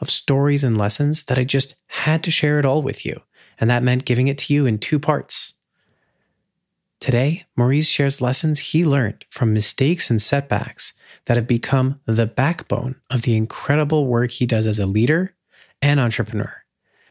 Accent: American